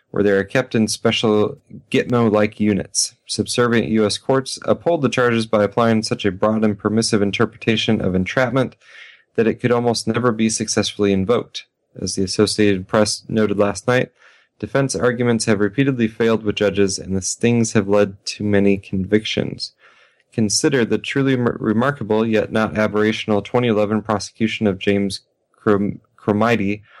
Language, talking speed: English, 145 wpm